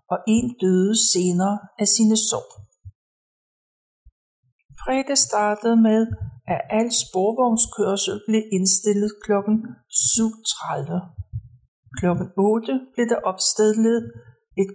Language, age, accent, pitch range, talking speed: Danish, 60-79, native, 165-225 Hz, 100 wpm